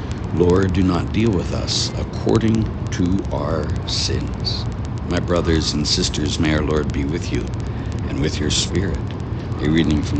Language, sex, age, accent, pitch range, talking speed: English, male, 60-79, American, 80-110 Hz, 160 wpm